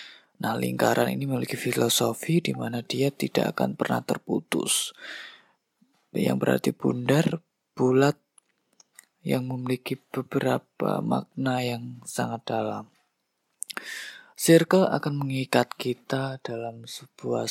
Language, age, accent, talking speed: Indonesian, 20-39, native, 100 wpm